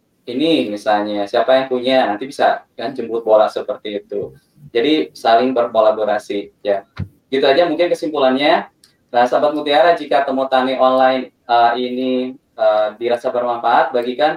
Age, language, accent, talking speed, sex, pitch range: 20-39, Indonesian, native, 140 wpm, male, 115-130 Hz